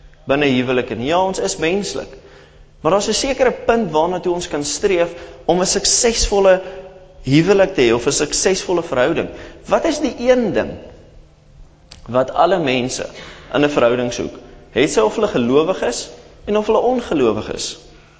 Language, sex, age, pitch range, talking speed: English, male, 30-49, 130-205 Hz, 150 wpm